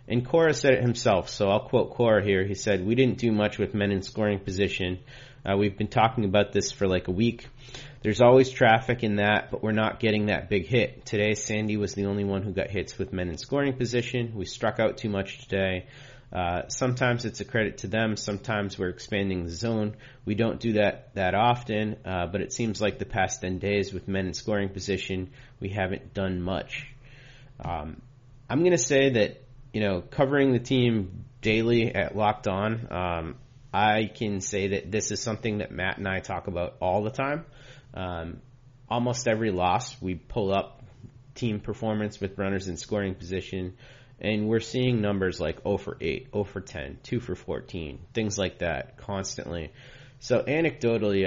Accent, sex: American, male